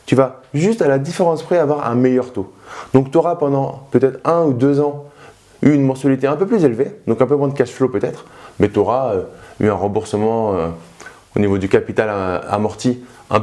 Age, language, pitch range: 20-39, French, 110-145 Hz